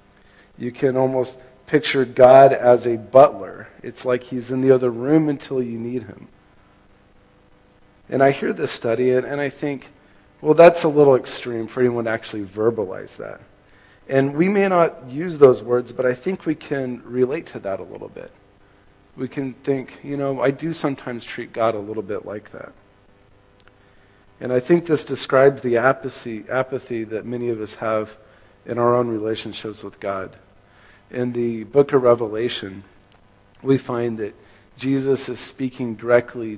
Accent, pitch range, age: American, 100-130 Hz, 40-59